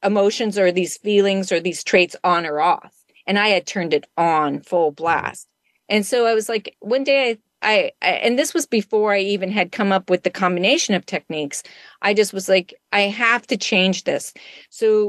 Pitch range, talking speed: 175-215 Hz, 205 wpm